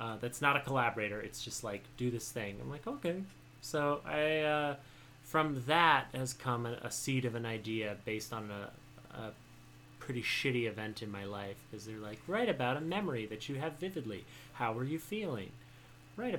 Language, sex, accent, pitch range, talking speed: English, male, American, 110-140 Hz, 195 wpm